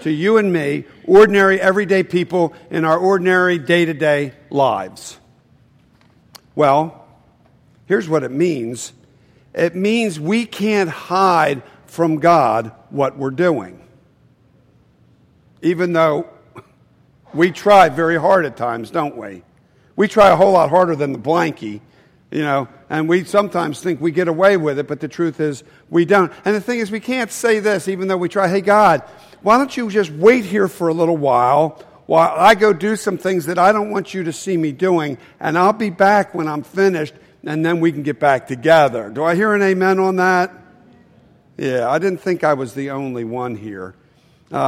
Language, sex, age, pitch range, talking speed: English, male, 50-69, 155-200 Hz, 180 wpm